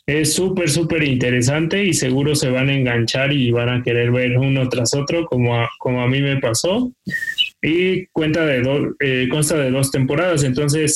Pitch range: 125-150 Hz